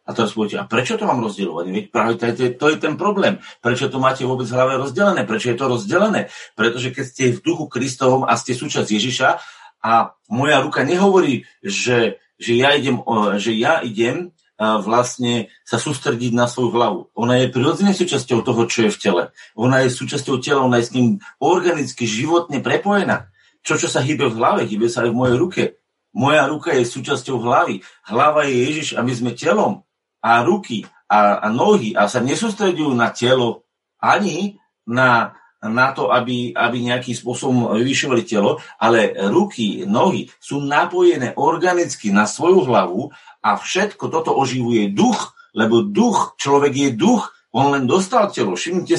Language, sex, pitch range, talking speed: Slovak, male, 120-155 Hz, 175 wpm